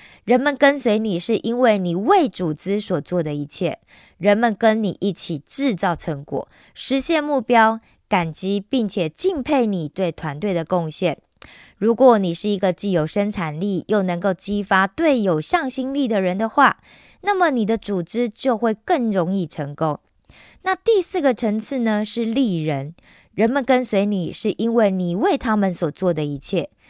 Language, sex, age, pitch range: Korean, female, 20-39, 175-250 Hz